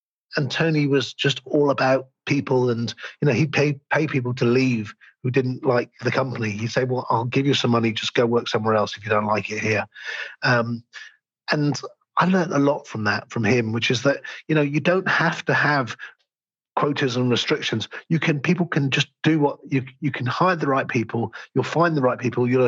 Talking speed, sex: 220 wpm, male